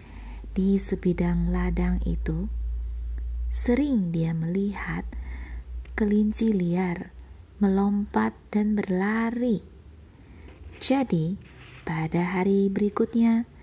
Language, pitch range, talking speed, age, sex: Indonesian, 165-220 Hz, 70 wpm, 20-39, female